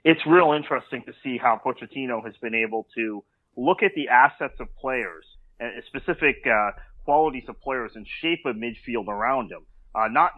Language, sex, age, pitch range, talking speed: English, male, 30-49, 115-150 Hz, 175 wpm